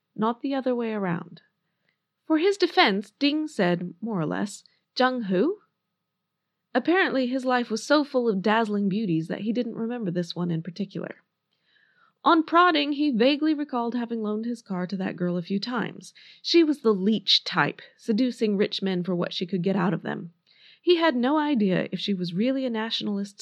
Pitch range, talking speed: 185-255 Hz, 185 wpm